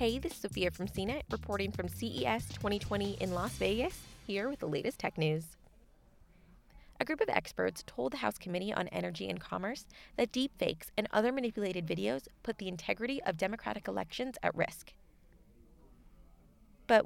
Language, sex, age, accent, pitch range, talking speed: English, female, 20-39, American, 180-250 Hz, 160 wpm